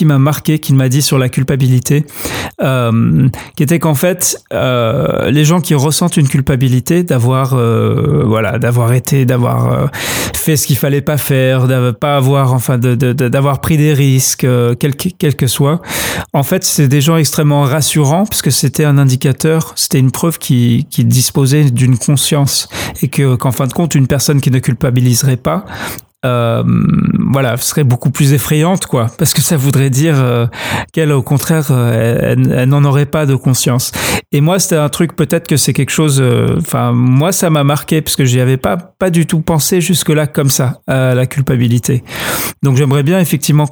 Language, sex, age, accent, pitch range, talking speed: French, male, 40-59, French, 130-155 Hz, 200 wpm